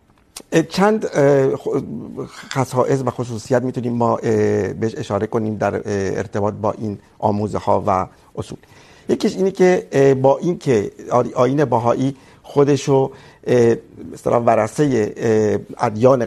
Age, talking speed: 50-69, 105 wpm